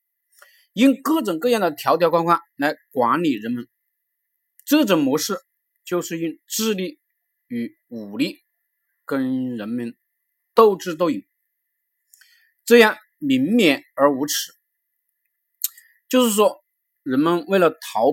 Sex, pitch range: male, 165-255 Hz